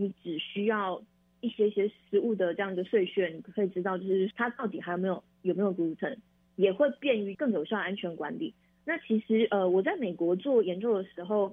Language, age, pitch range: Chinese, 20-39, 180-220 Hz